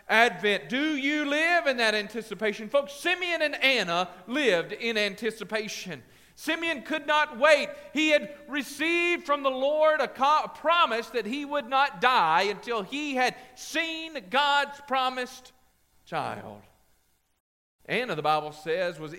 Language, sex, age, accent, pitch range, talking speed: English, male, 40-59, American, 210-295 Hz, 135 wpm